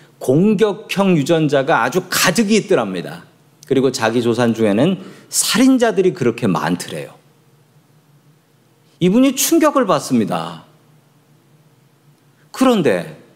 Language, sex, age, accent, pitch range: Korean, male, 40-59, native, 140-180 Hz